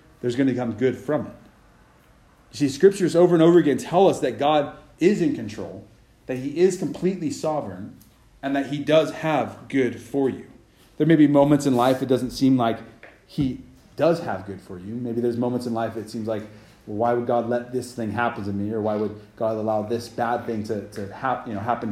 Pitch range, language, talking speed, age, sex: 110-140 Hz, English, 215 wpm, 30-49, male